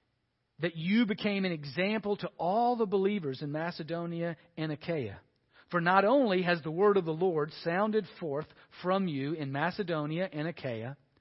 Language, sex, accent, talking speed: English, male, American, 160 wpm